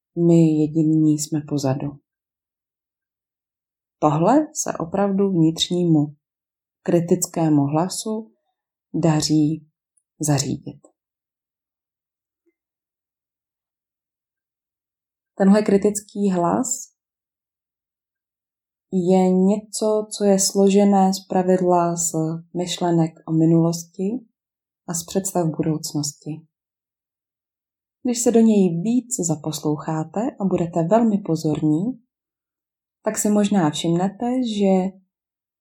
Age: 30-49